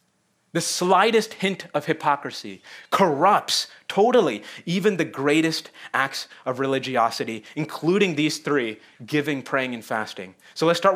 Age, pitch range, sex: 30-49, 140-160 Hz, male